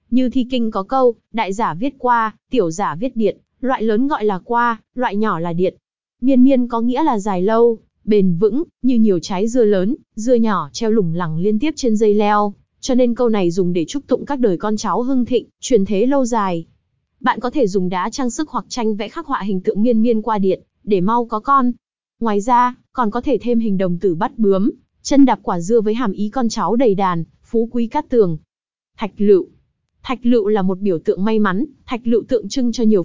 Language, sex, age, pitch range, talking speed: Vietnamese, female, 20-39, 200-245 Hz, 230 wpm